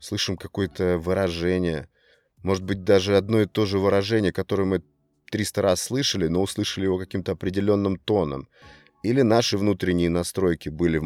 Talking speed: 150 wpm